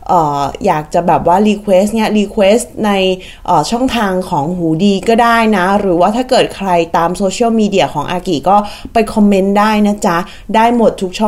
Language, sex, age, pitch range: Thai, female, 20-39, 185-265 Hz